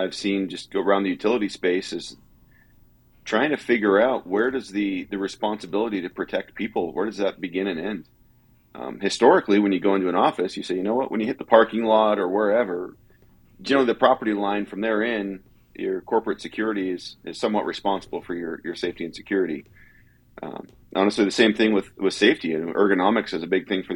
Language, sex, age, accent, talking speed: English, male, 40-59, American, 215 wpm